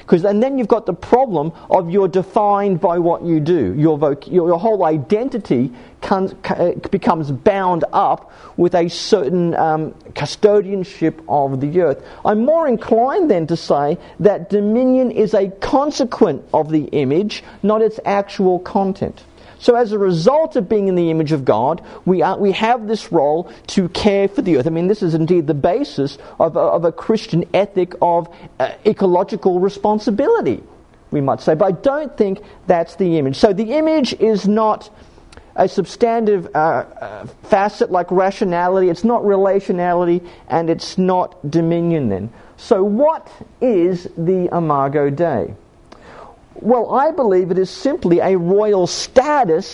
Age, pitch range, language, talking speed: 50-69, 170-220 Hz, English, 160 wpm